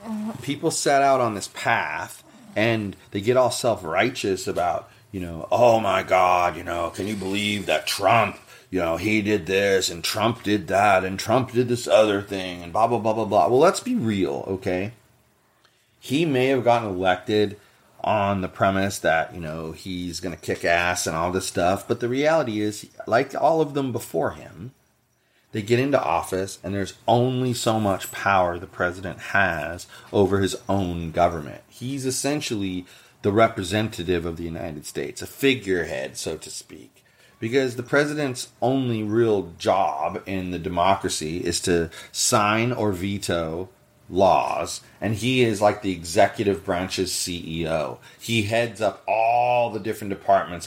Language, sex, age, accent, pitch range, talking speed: English, male, 30-49, American, 90-120 Hz, 165 wpm